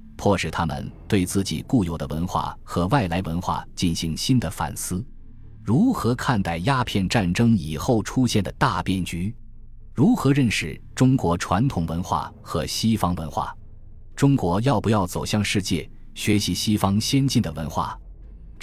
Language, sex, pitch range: Chinese, male, 85-115 Hz